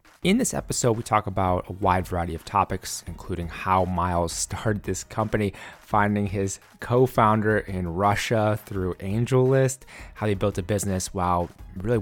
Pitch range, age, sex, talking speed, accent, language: 90-110 Hz, 20-39, male, 155 wpm, American, English